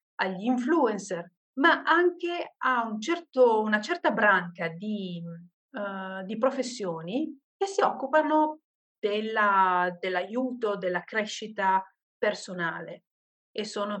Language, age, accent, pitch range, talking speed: Italian, 40-59, native, 185-245 Hz, 85 wpm